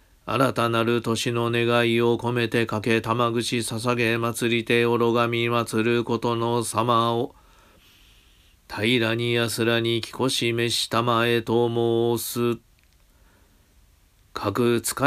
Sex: male